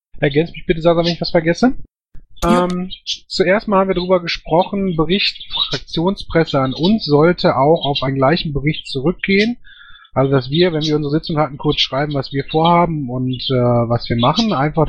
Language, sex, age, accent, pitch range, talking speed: German, male, 30-49, German, 140-180 Hz, 180 wpm